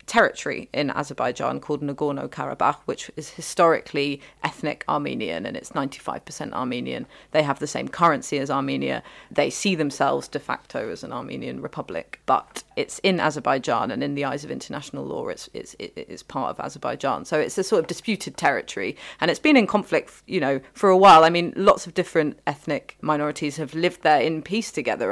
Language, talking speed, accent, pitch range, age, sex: English, 185 wpm, British, 145-175 Hz, 30-49, female